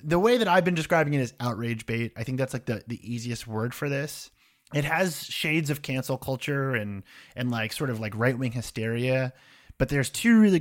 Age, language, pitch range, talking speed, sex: 30-49, English, 115-155 Hz, 220 wpm, male